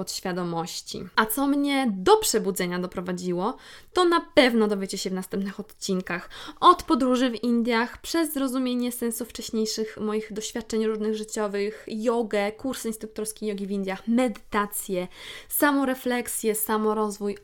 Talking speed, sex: 125 wpm, female